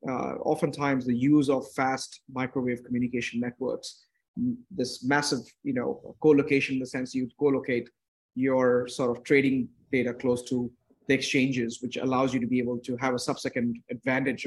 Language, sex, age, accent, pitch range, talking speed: English, male, 30-49, Indian, 125-150 Hz, 160 wpm